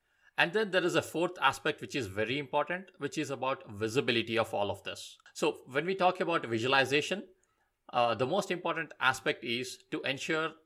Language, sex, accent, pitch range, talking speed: English, male, Indian, 115-155 Hz, 185 wpm